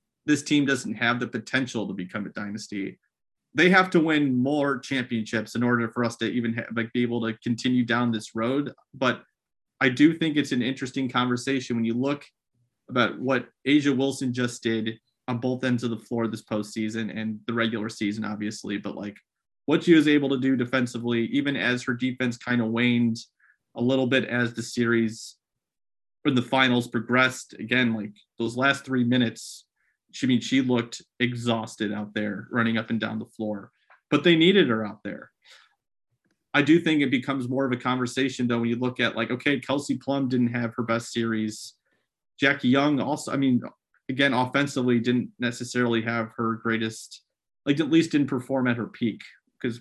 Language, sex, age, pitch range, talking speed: English, male, 30-49, 115-130 Hz, 190 wpm